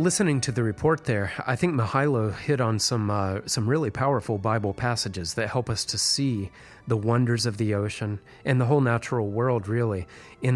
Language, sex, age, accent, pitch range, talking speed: English, male, 30-49, American, 105-130 Hz, 195 wpm